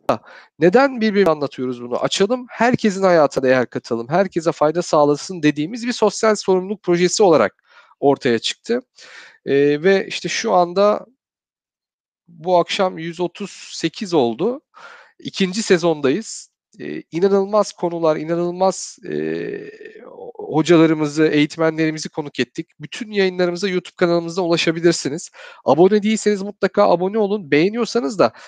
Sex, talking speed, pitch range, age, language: male, 110 wpm, 165-215 Hz, 40-59, Turkish